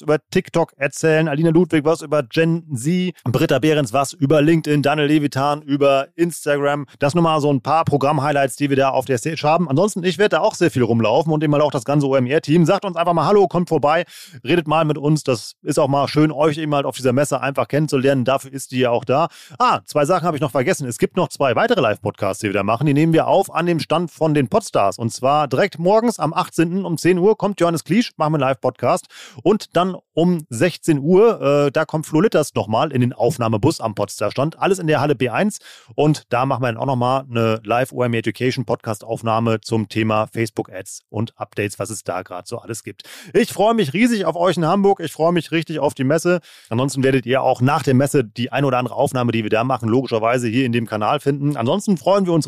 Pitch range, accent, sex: 130-165 Hz, German, male